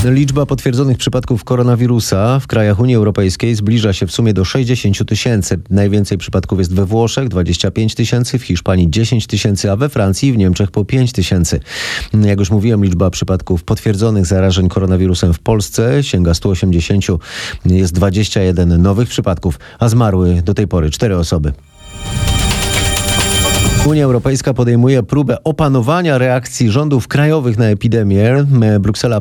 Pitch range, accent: 95-125 Hz, native